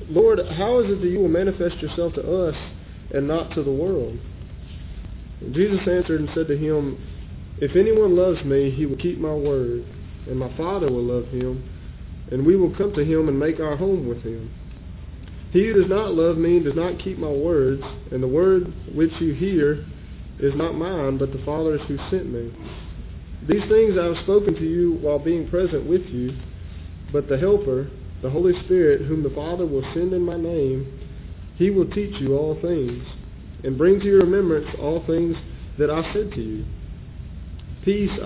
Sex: male